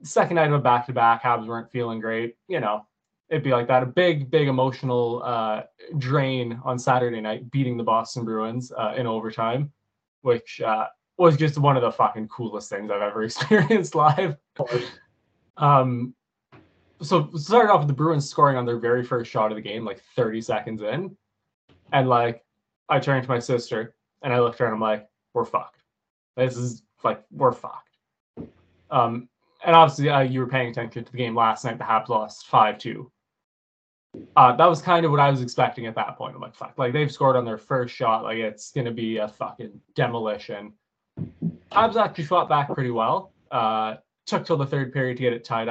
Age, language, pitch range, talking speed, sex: 20-39, English, 115-140 Hz, 195 wpm, male